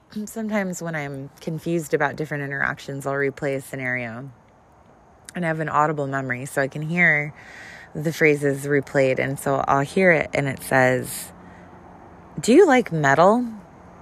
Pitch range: 140-175 Hz